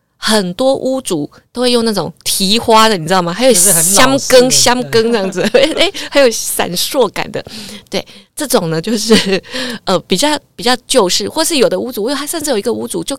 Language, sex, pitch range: Chinese, female, 180-255 Hz